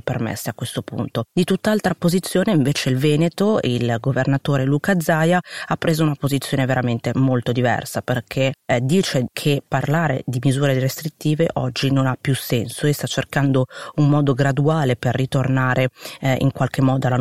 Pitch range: 125-150 Hz